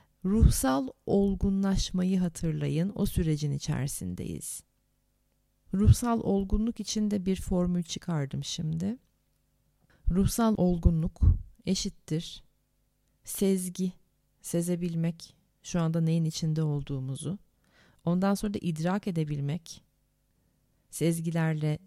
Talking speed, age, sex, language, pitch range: 80 wpm, 40-59, female, Turkish, 160-205 Hz